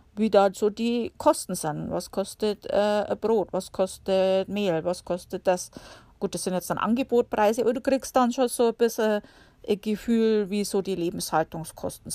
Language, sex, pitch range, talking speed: German, female, 185-235 Hz, 185 wpm